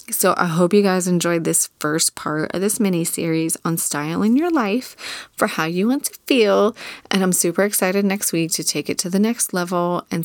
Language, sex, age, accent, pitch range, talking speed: English, female, 20-39, American, 165-205 Hz, 215 wpm